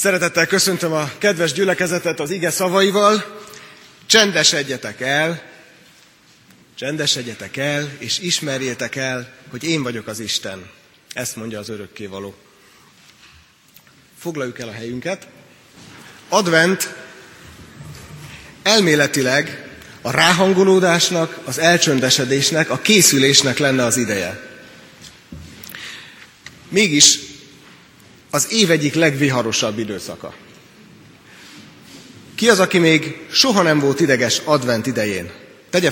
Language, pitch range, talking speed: Hungarian, 125-175 Hz, 100 wpm